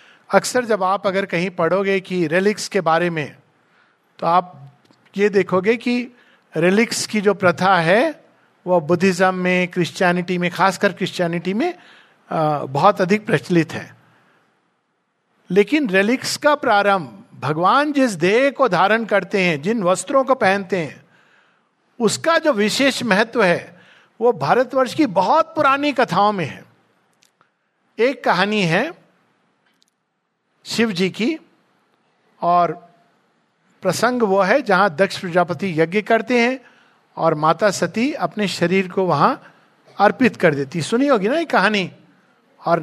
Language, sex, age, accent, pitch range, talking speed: Hindi, male, 50-69, native, 180-235 Hz, 130 wpm